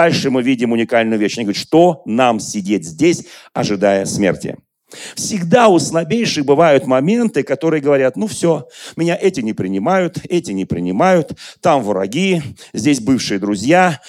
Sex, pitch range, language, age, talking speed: male, 130-180 Hz, Russian, 40-59, 145 wpm